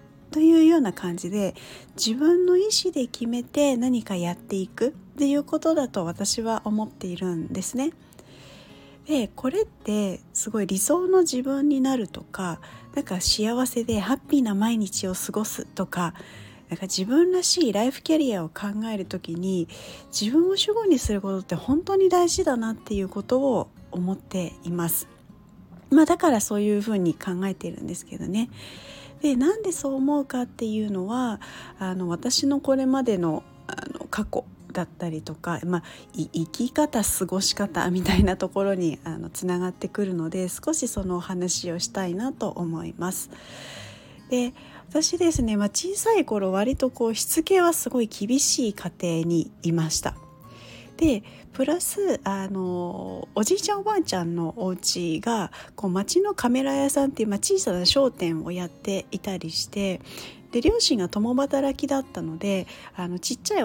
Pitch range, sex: 185-275 Hz, female